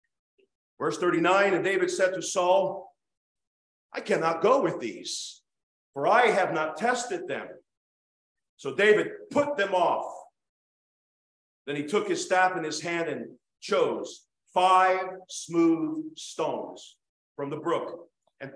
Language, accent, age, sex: English, American, 50-69, male